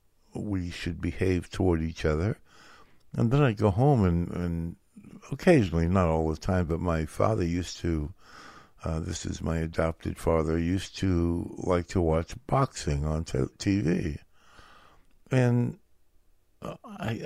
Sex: male